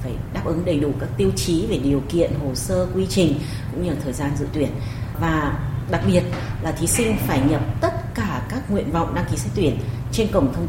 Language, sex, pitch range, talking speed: Vietnamese, female, 120-150 Hz, 220 wpm